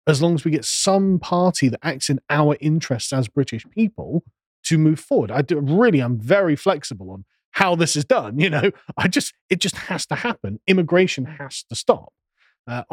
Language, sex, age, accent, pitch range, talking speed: English, male, 30-49, British, 115-165 Hz, 200 wpm